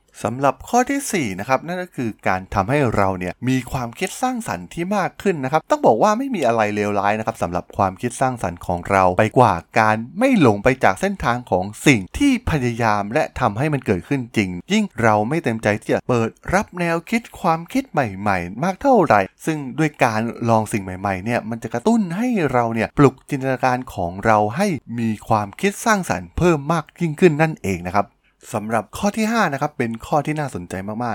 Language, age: Thai, 20-39